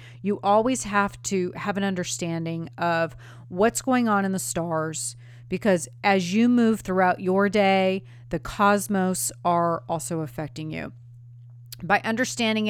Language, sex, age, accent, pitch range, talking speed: English, female, 40-59, American, 155-205 Hz, 135 wpm